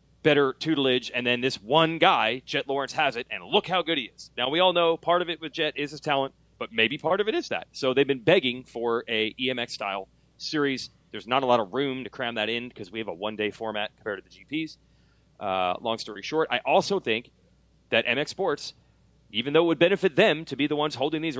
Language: English